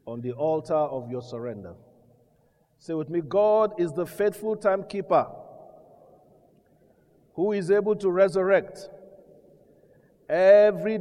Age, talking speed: 50-69, 110 wpm